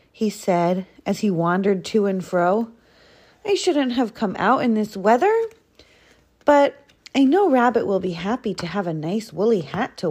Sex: female